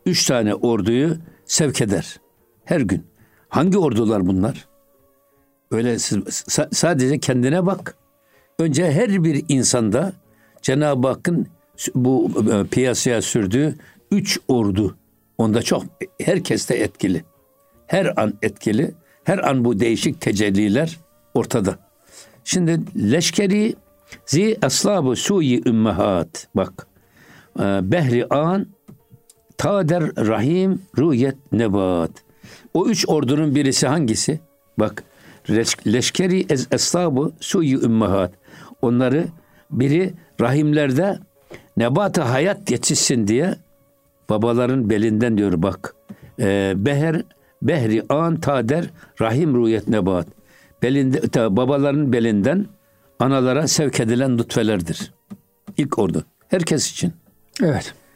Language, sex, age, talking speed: Turkish, male, 60-79, 90 wpm